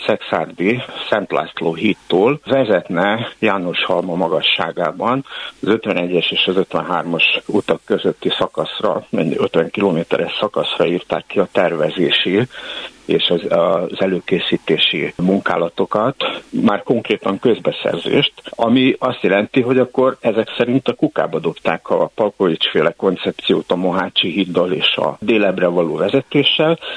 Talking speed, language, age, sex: 120 wpm, Hungarian, 60-79, male